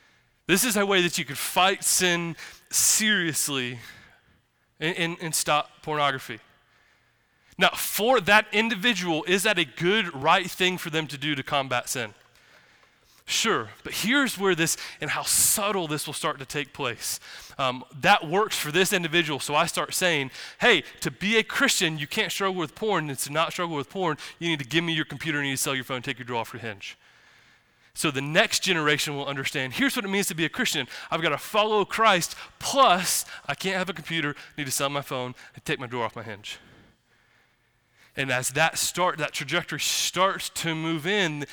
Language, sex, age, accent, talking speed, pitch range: English, male, 20-39, American, 200 wpm, 140-185 Hz